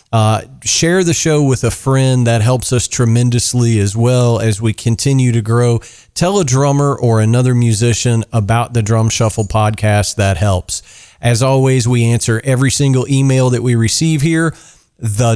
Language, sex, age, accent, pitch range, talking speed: English, male, 40-59, American, 110-130 Hz, 170 wpm